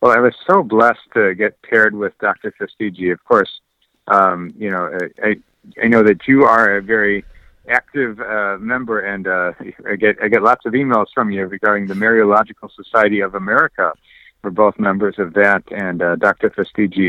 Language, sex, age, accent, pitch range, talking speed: English, male, 50-69, American, 100-115 Hz, 185 wpm